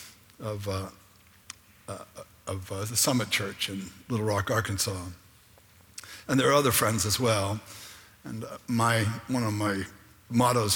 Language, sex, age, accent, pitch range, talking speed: English, male, 60-79, American, 100-120 Hz, 145 wpm